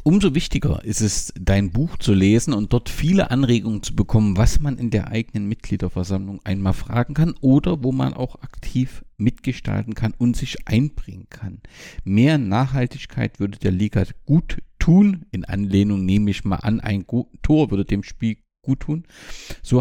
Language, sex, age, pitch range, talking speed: German, male, 50-69, 100-125 Hz, 165 wpm